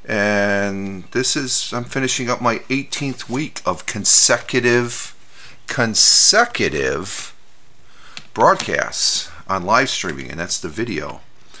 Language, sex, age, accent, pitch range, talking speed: English, male, 40-59, American, 90-110 Hz, 105 wpm